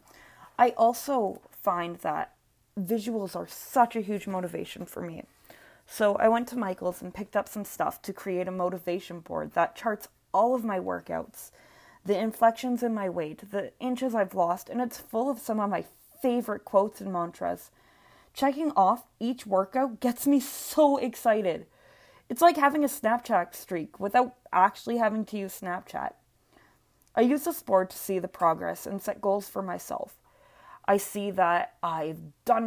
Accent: American